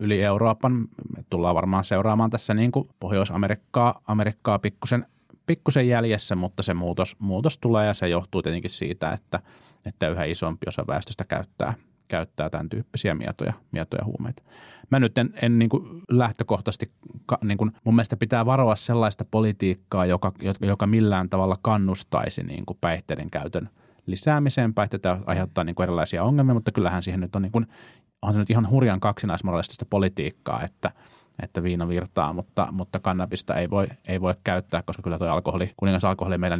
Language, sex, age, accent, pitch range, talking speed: Finnish, male, 30-49, native, 90-115 Hz, 160 wpm